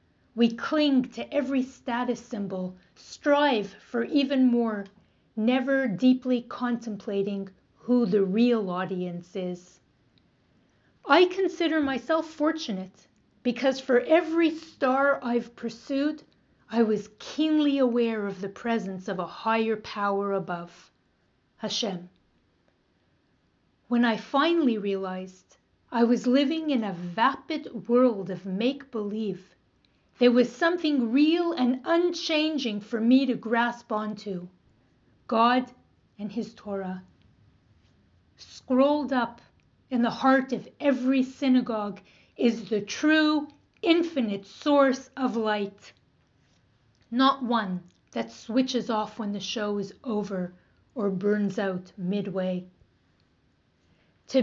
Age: 40-59